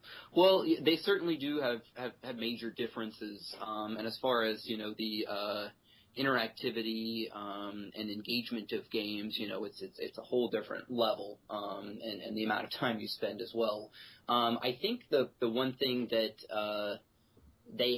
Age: 30-49